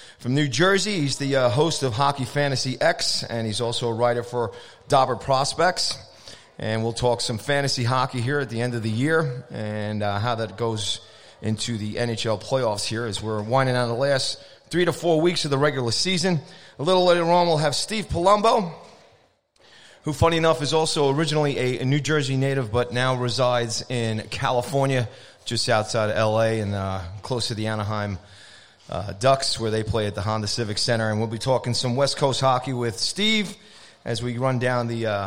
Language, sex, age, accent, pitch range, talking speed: English, male, 30-49, American, 110-135 Hz, 195 wpm